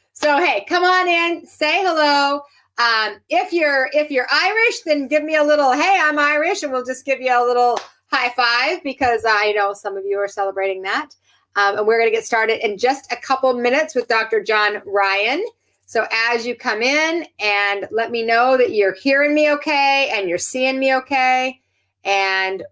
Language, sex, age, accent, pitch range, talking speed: English, female, 30-49, American, 200-280 Hz, 200 wpm